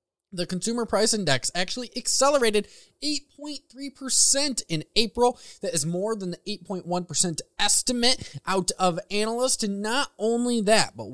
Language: English